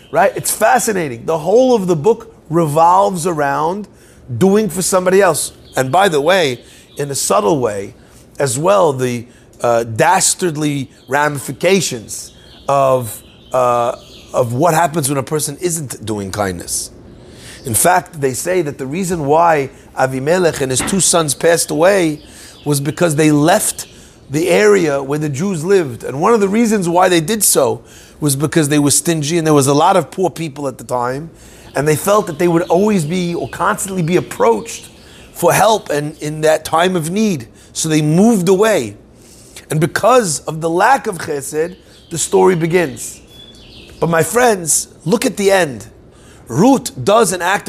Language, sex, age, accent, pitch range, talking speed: English, male, 40-59, American, 140-190 Hz, 165 wpm